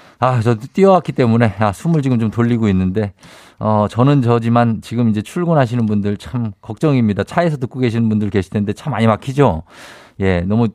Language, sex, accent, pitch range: Korean, male, native, 105-130 Hz